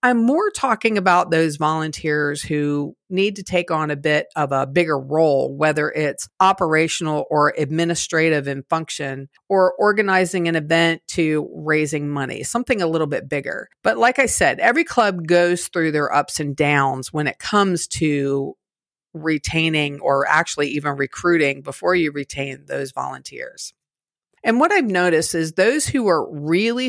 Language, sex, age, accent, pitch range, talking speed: English, female, 40-59, American, 150-190 Hz, 160 wpm